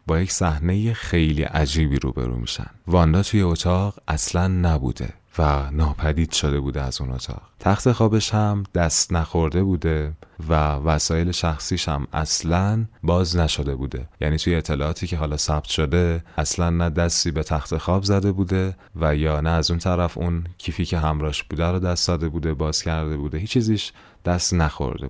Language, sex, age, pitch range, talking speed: Persian, male, 30-49, 80-95 Hz, 165 wpm